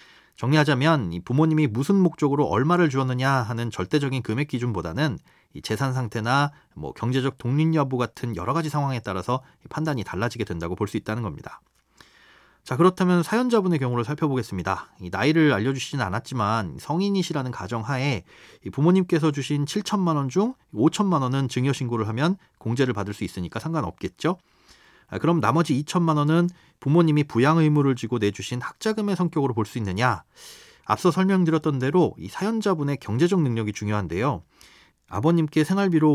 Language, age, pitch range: Korean, 40-59, 120-165 Hz